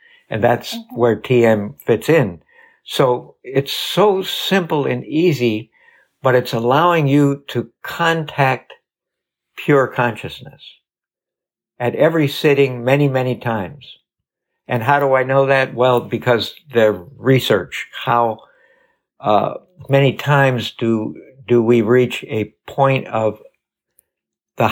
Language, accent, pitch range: English, American, 115-145 Hz